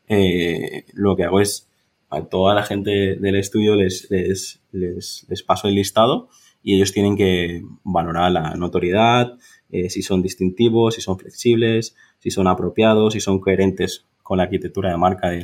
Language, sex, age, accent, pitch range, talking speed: Spanish, male, 20-39, Spanish, 90-105 Hz, 170 wpm